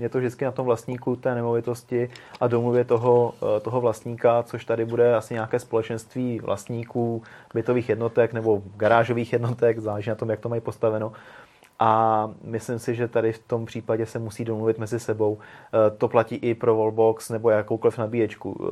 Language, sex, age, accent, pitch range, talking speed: Czech, male, 30-49, native, 110-120 Hz, 170 wpm